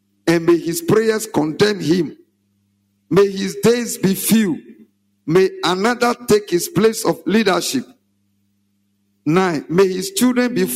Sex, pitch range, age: male, 150-225 Hz, 50-69